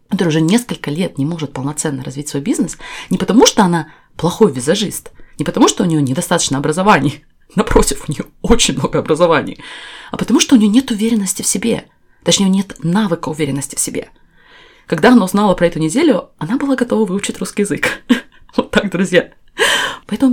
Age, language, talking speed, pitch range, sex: 20-39, Russian, 175 wpm, 145-205 Hz, female